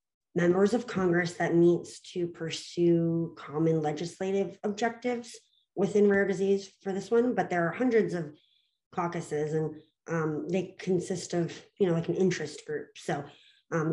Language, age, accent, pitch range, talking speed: English, 30-49, American, 150-195 Hz, 150 wpm